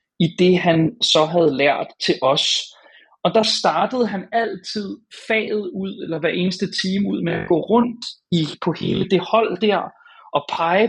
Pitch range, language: 165-210 Hz, Danish